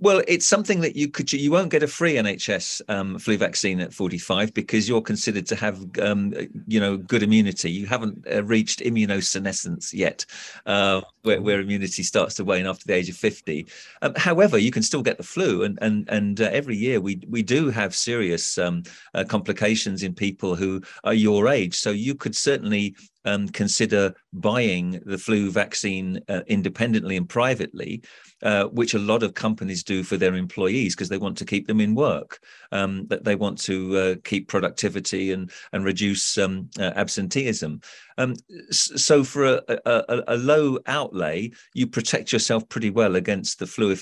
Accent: British